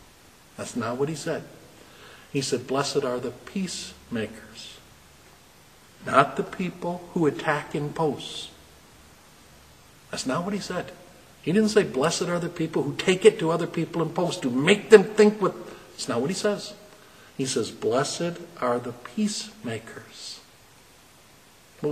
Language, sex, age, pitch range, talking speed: English, male, 60-79, 110-165 Hz, 150 wpm